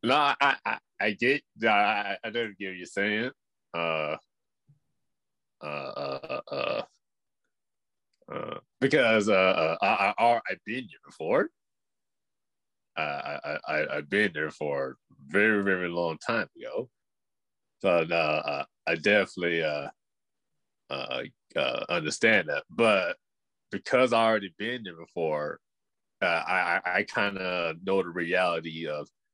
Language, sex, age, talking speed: English, male, 30-49, 130 wpm